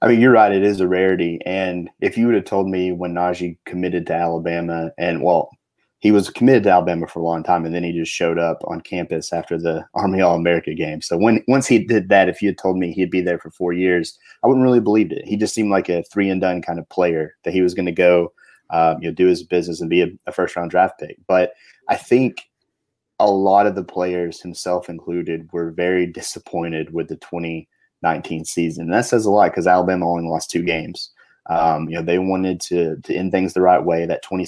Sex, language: male, English